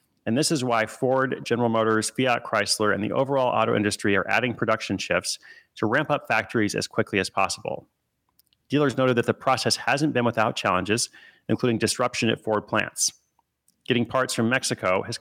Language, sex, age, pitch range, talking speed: English, male, 30-49, 105-130 Hz, 180 wpm